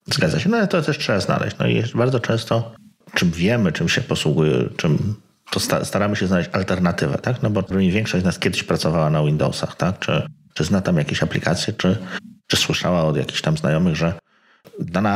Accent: native